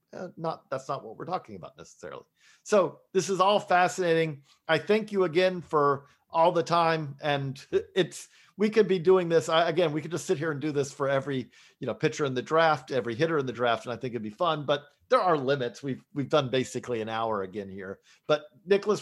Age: 50-69